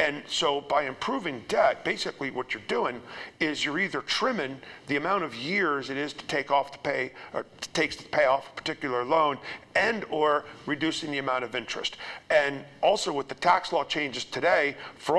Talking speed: 190 wpm